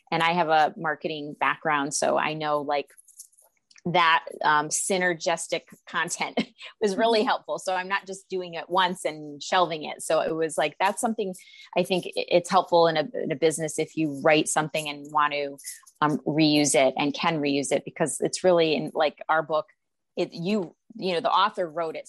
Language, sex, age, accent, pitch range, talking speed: English, female, 30-49, American, 155-185 Hz, 195 wpm